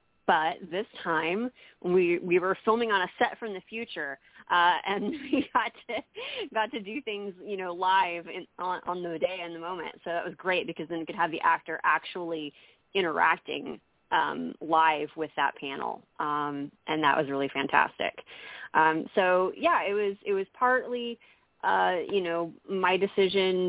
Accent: American